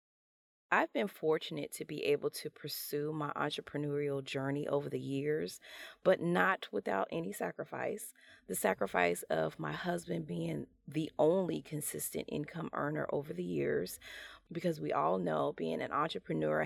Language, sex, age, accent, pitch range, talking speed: English, female, 30-49, American, 150-185 Hz, 145 wpm